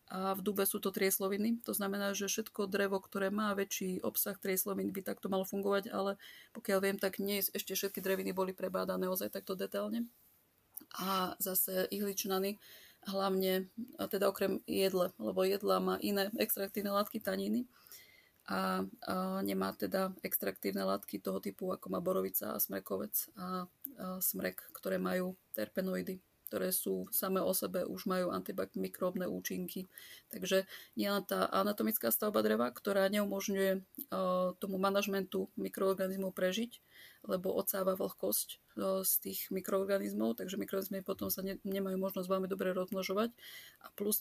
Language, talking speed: Slovak, 145 wpm